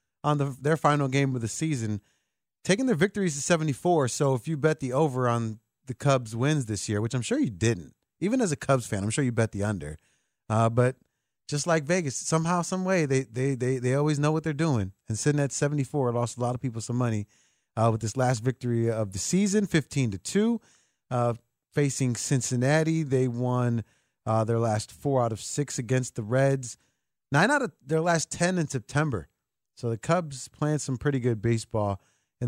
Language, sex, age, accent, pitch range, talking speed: English, male, 30-49, American, 115-145 Hz, 210 wpm